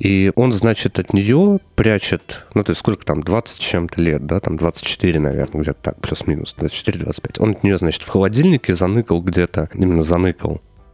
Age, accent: 30-49, native